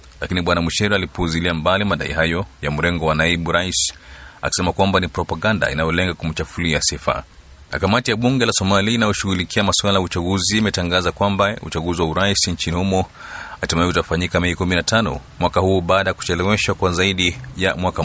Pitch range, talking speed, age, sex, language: 85-100 Hz, 155 wpm, 30-49, male, Swahili